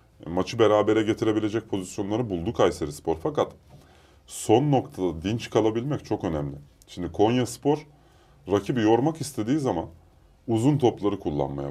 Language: Turkish